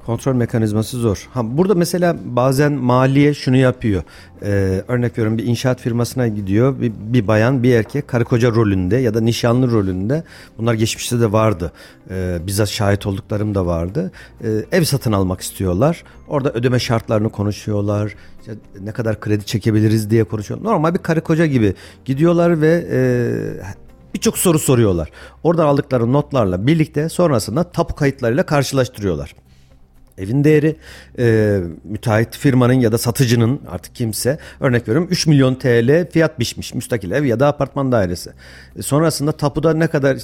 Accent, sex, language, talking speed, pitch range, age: native, male, Turkish, 150 wpm, 110-145 Hz, 50-69